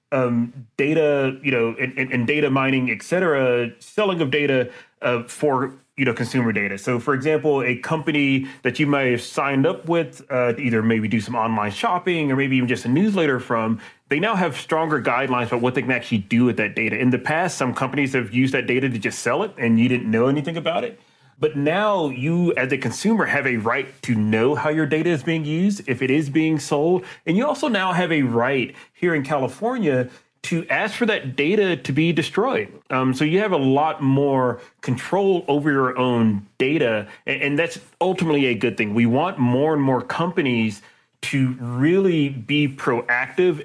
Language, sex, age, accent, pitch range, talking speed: English, male, 30-49, American, 125-155 Hz, 205 wpm